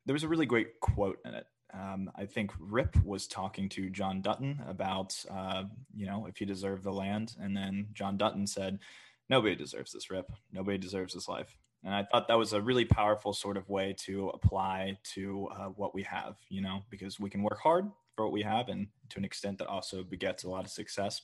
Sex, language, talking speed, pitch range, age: male, English, 225 wpm, 95-110 Hz, 20-39